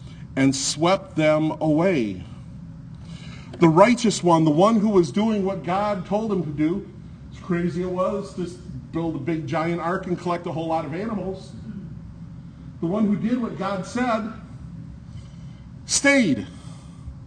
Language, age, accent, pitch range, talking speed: English, 50-69, American, 155-205 Hz, 150 wpm